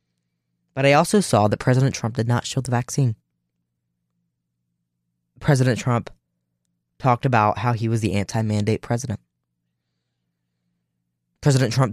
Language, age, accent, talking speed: English, 10-29, American, 120 wpm